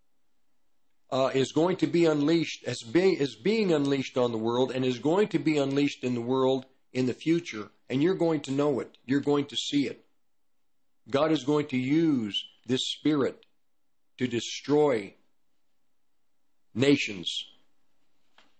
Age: 50-69